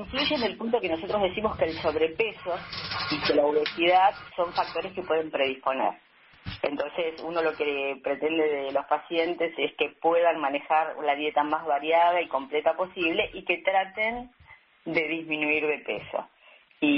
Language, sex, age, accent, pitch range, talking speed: Spanish, female, 30-49, Argentinian, 150-195 Hz, 165 wpm